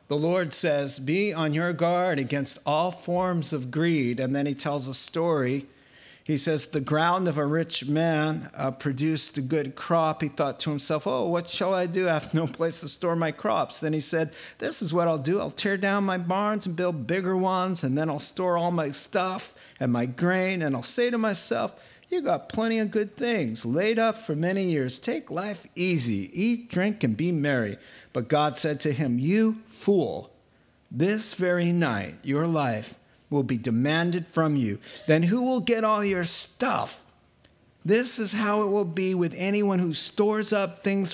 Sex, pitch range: male, 150-200 Hz